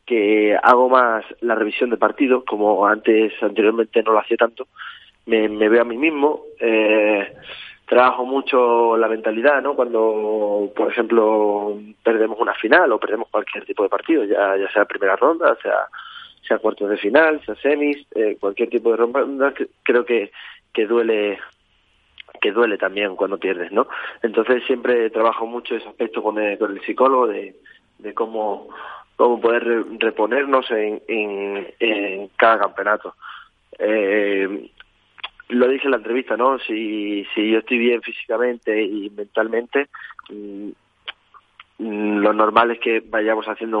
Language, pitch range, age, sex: Spanish, 105-125 Hz, 20-39, male